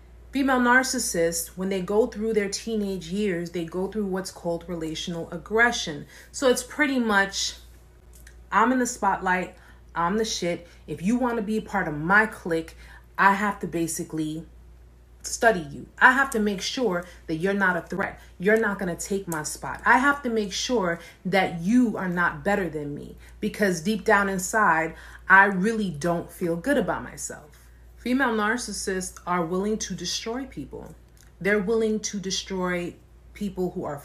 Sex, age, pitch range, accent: female, 30-49, 165-215 Hz, American